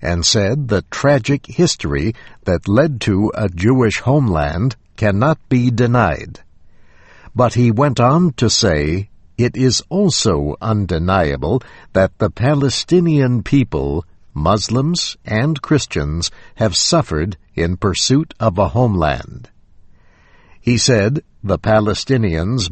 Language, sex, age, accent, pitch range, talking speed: English, male, 60-79, American, 90-125 Hz, 110 wpm